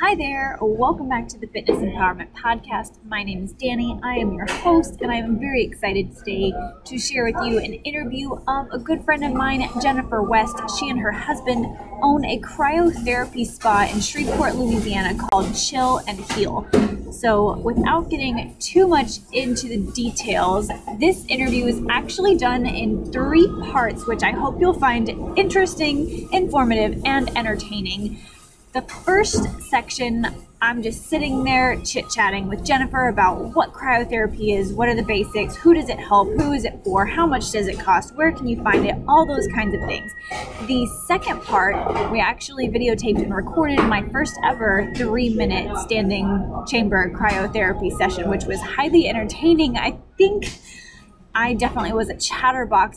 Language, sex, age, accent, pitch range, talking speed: English, female, 20-39, American, 215-275 Hz, 165 wpm